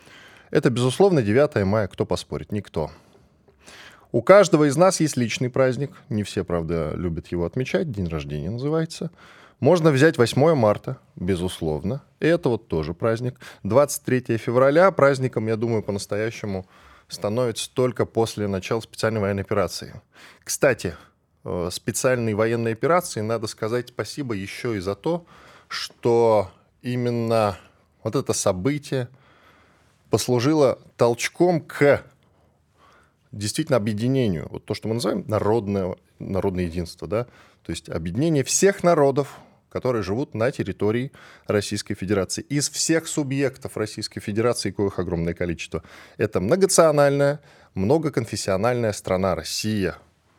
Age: 10-29